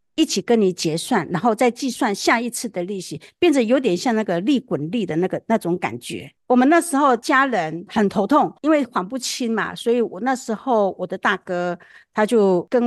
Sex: female